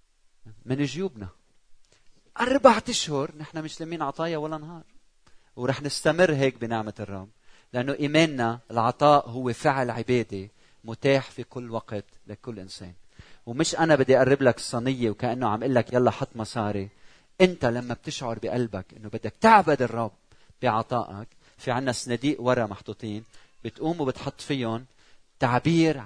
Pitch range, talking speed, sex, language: 110-150 Hz, 130 wpm, male, Arabic